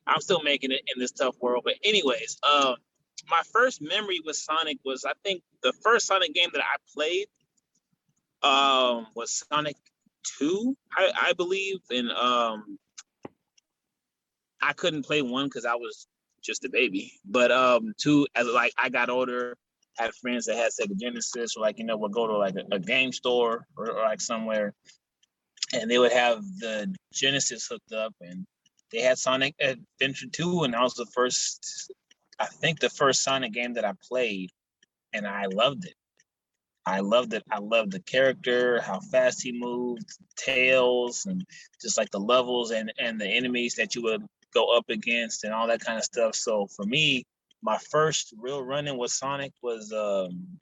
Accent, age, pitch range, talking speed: American, 20-39, 120-180 Hz, 180 wpm